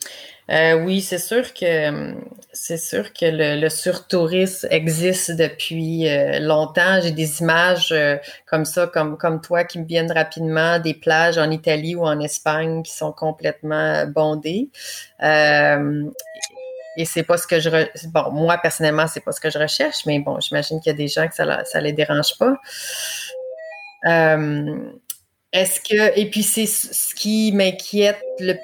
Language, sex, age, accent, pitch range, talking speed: French, female, 30-49, Canadian, 155-190 Hz, 160 wpm